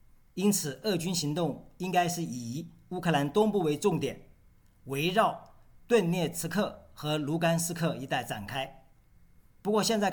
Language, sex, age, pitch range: Chinese, male, 50-69, 140-185 Hz